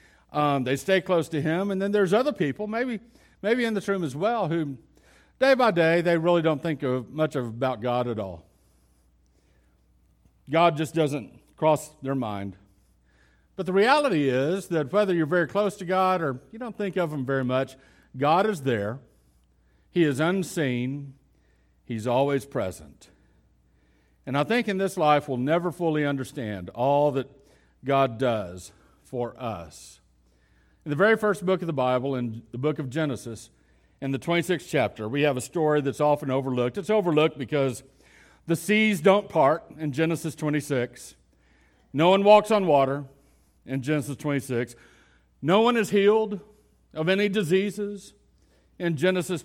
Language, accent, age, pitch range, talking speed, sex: English, American, 50-69, 120-175 Hz, 165 wpm, male